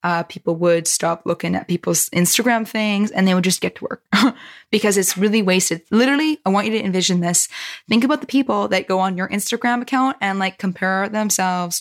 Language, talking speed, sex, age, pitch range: English, 210 wpm, female, 20-39, 185-230 Hz